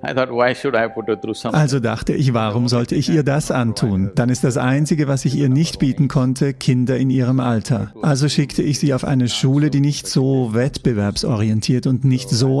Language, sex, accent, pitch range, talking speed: English, male, German, 120-150 Hz, 175 wpm